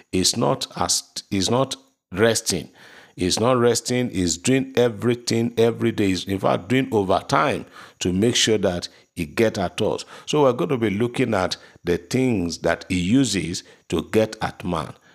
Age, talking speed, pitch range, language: 50-69, 165 wpm, 95-120 Hz, English